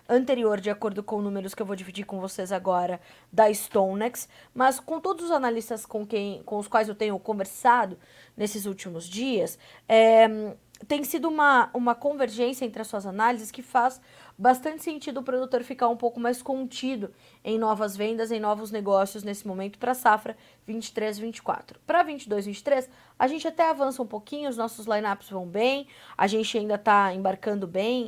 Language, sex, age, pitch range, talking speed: Portuguese, female, 20-39, 205-250 Hz, 180 wpm